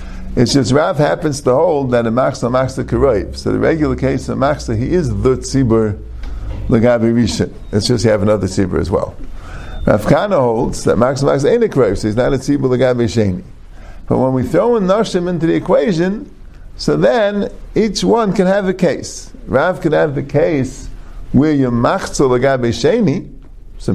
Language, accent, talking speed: English, American, 190 wpm